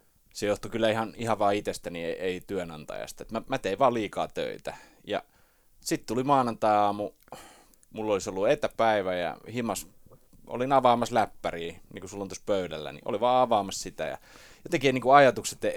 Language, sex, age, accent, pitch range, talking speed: Finnish, male, 30-49, native, 95-135 Hz, 180 wpm